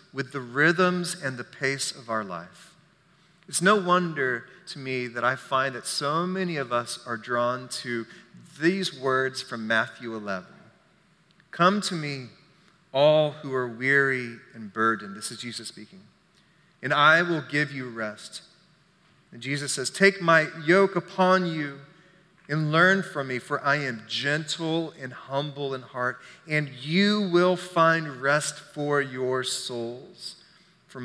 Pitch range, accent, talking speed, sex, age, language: 130-180 Hz, American, 150 wpm, male, 40-59, English